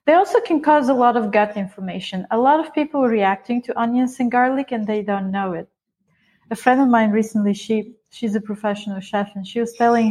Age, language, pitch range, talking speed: 30-49, English, 200-245 Hz, 225 wpm